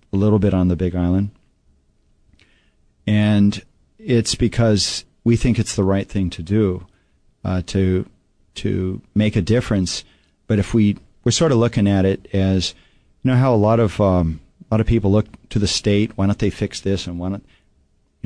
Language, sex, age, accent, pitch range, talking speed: English, male, 40-59, American, 90-110 Hz, 185 wpm